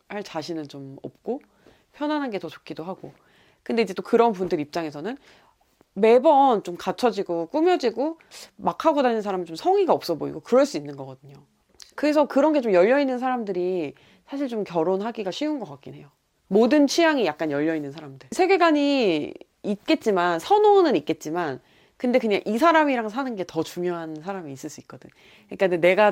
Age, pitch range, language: 30-49, 160-260 Hz, Korean